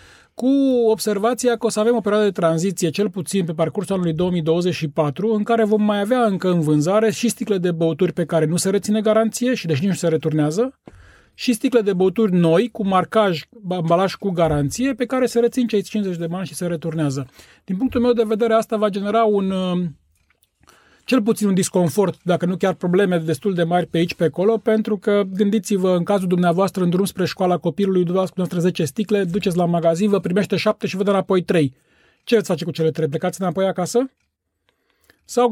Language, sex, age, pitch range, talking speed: Romanian, male, 30-49, 165-210 Hz, 205 wpm